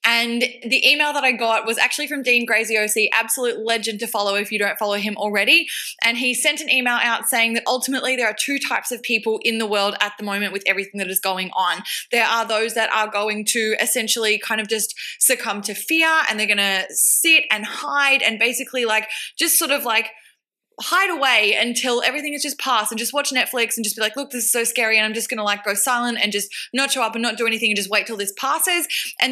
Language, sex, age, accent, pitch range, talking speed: English, female, 20-39, Australian, 215-265 Hz, 245 wpm